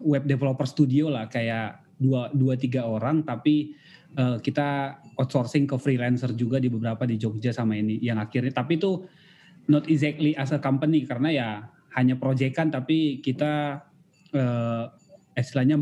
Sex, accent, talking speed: male, native, 150 wpm